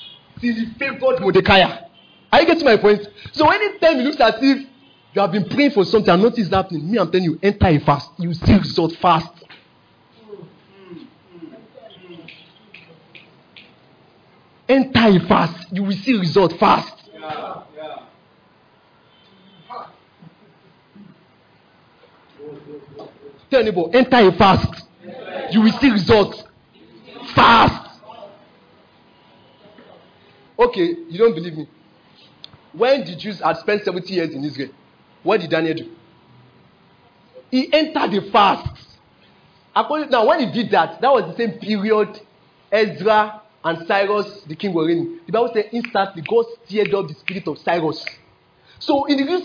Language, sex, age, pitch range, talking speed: English, male, 50-69, 175-245 Hz, 140 wpm